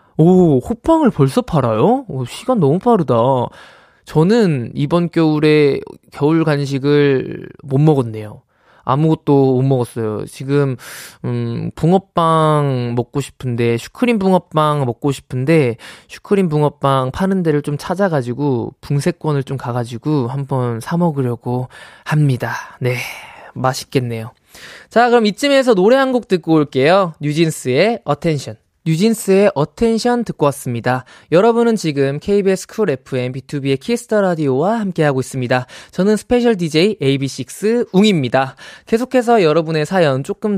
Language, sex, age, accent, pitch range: Korean, male, 20-39, native, 135-210 Hz